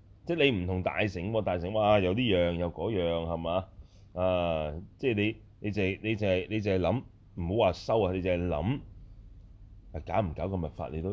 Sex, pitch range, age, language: male, 85-100 Hz, 30-49, Chinese